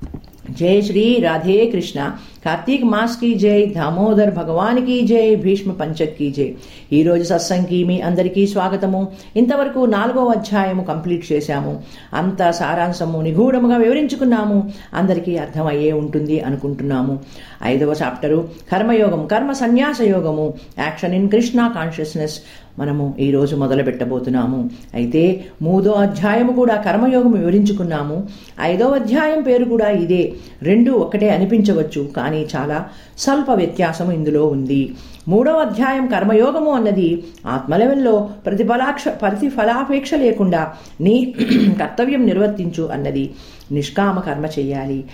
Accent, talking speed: native, 110 wpm